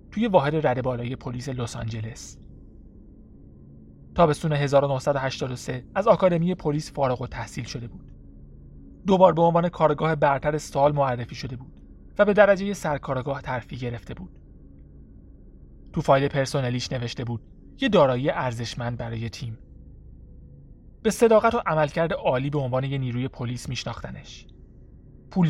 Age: 30-49